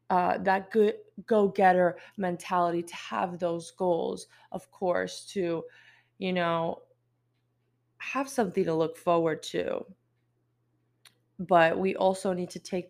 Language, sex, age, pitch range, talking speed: English, female, 20-39, 160-205 Hz, 120 wpm